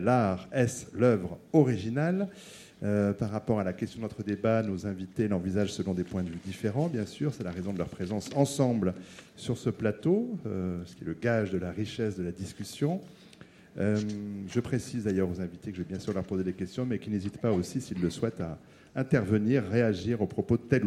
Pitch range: 95-120 Hz